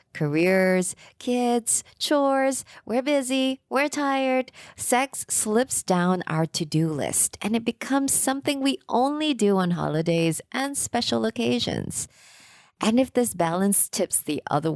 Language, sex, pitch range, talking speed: English, female, 155-235 Hz, 130 wpm